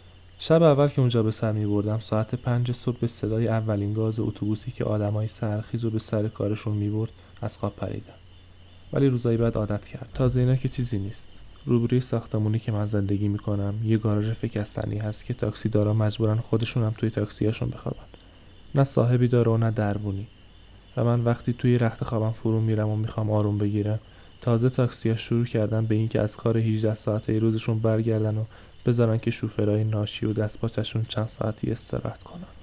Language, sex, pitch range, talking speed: Persian, male, 105-115 Hz, 175 wpm